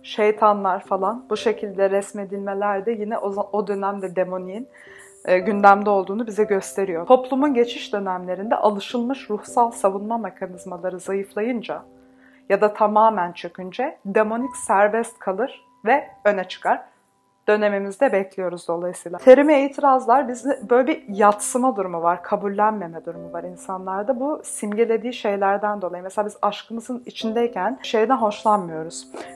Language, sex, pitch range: Turkish, female, 195-240 Hz